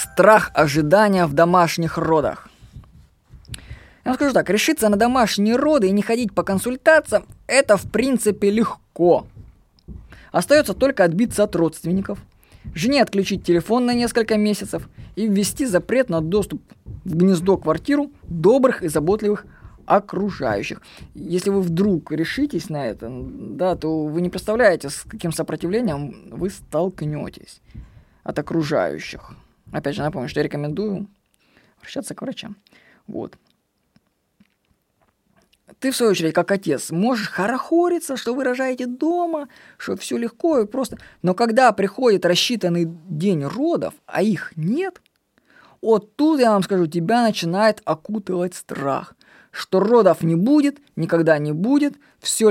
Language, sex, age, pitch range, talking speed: Russian, female, 20-39, 165-245 Hz, 135 wpm